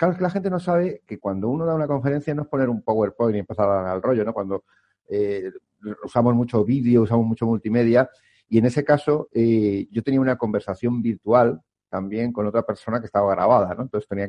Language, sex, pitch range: Spanish, male, 105-145 Hz